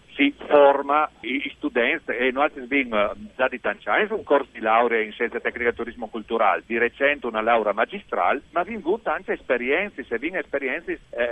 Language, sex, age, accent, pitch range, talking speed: Italian, male, 50-69, native, 130-160 Hz, 175 wpm